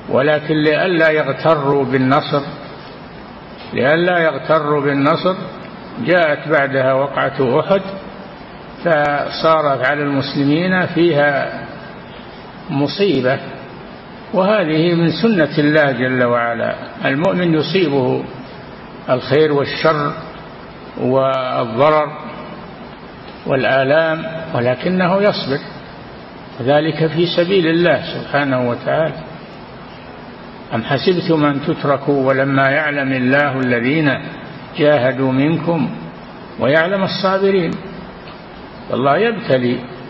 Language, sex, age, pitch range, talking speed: Arabic, male, 50-69, 135-160 Hz, 75 wpm